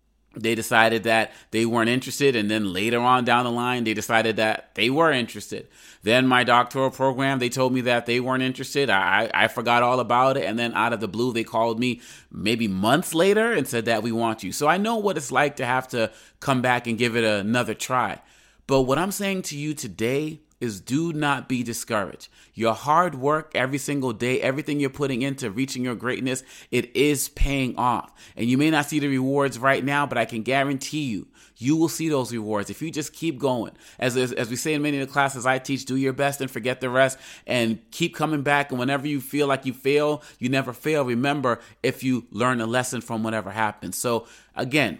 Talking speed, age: 220 wpm, 30-49